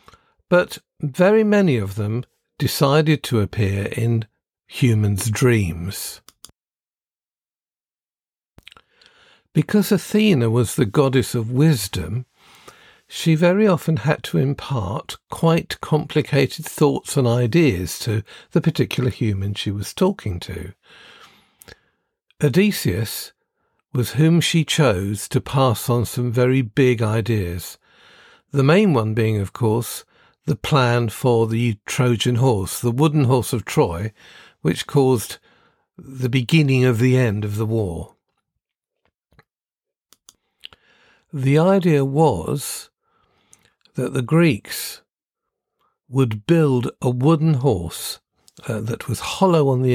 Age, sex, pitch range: 50-69, male, 115-155 Hz